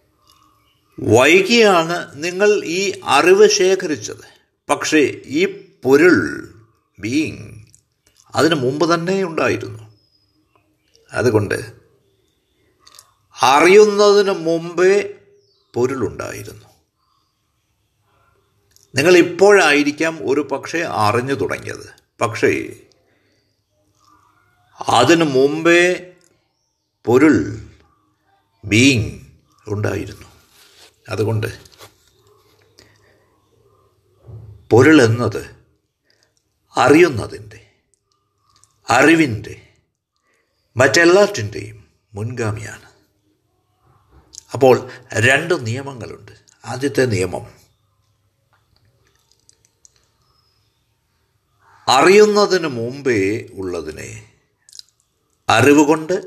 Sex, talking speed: male, 45 wpm